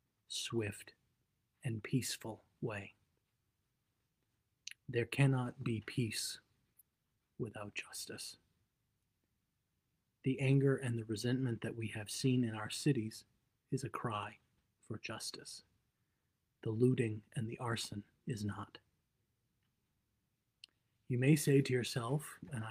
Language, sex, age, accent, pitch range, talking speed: English, male, 30-49, American, 110-130 Hz, 105 wpm